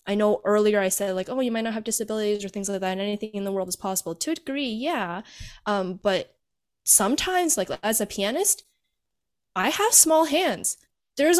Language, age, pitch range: English, 10-29, 180-240 Hz